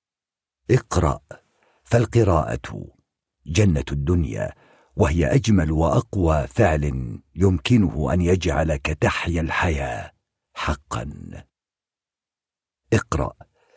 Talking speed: 65 wpm